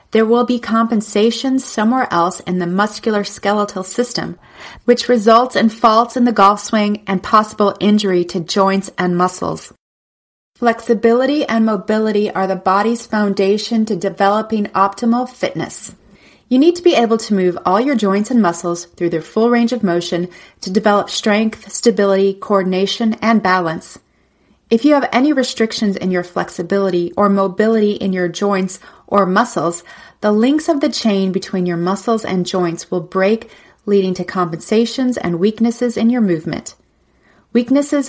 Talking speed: 155 wpm